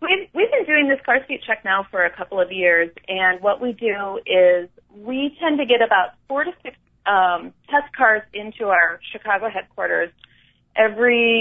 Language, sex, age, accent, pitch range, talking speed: English, female, 30-49, American, 200-255 Hz, 185 wpm